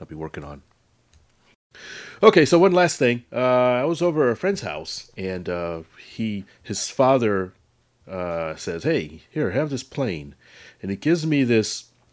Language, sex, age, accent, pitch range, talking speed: English, male, 30-49, American, 85-125 Hz, 170 wpm